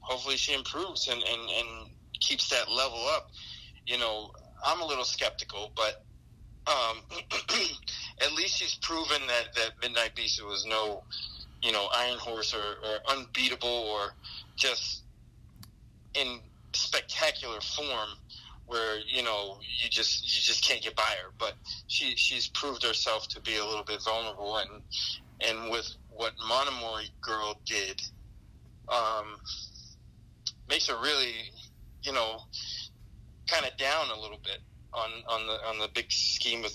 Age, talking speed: 30-49, 145 wpm